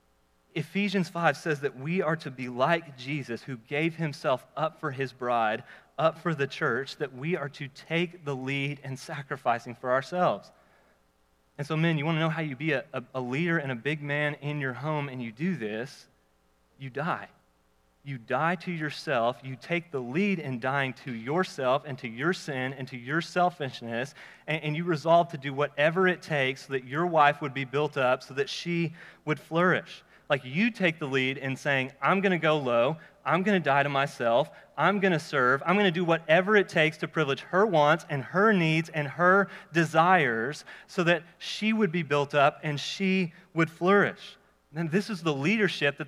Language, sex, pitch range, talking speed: English, male, 135-175 Hz, 205 wpm